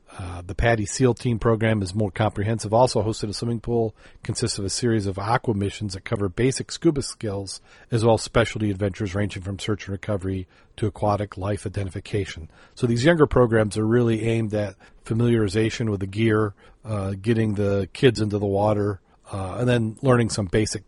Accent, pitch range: American, 100-115 Hz